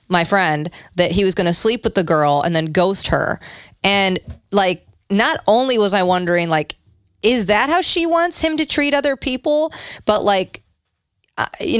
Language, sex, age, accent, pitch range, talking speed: English, female, 30-49, American, 160-210 Hz, 185 wpm